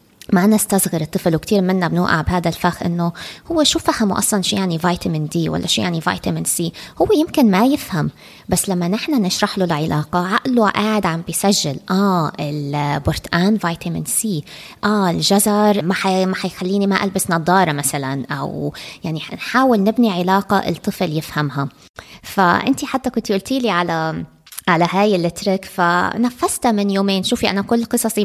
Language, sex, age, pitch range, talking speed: Arabic, female, 20-39, 180-225 Hz, 155 wpm